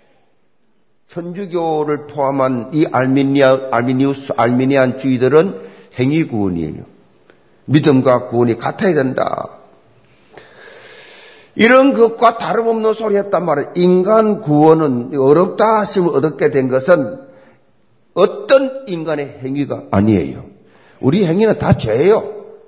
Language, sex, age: Korean, male, 50-69